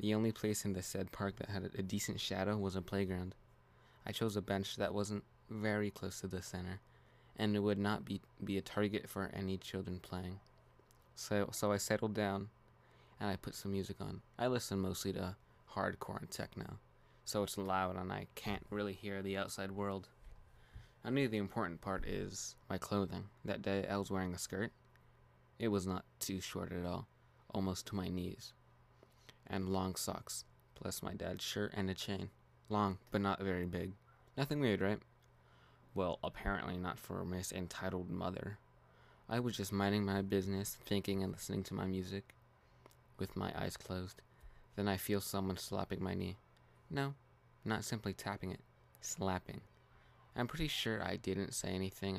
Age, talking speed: 20-39, 175 wpm